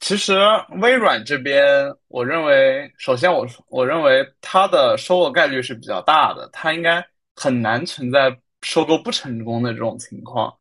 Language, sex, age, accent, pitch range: Chinese, male, 20-39, native, 125-190 Hz